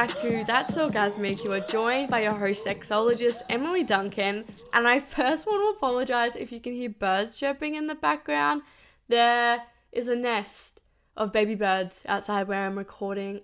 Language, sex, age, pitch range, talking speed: English, female, 10-29, 205-275 Hz, 170 wpm